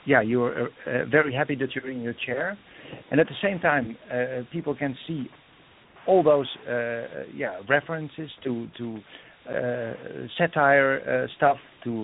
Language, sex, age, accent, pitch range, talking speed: English, male, 50-69, Dutch, 125-155 Hz, 155 wpm